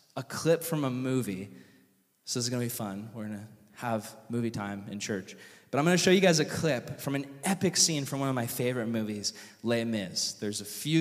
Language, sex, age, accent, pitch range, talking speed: English, male, 20-39, American, 120-170 Hz, 240 wpm